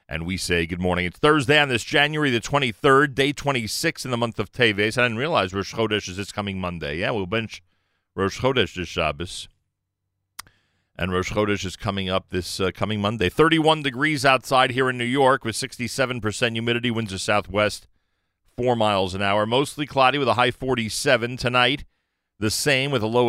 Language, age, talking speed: English, 40-59, 190 wpm